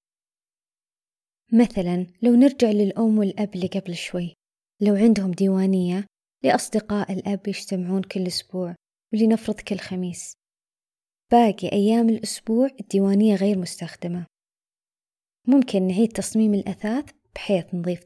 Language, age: Arabic, 20-39